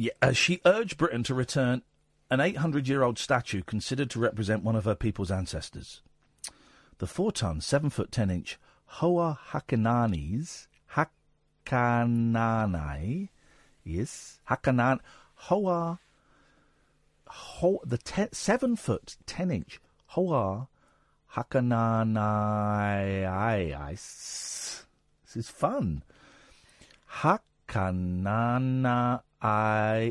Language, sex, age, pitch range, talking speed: English, male, 50-69, 95-135 Hz, 100 wpm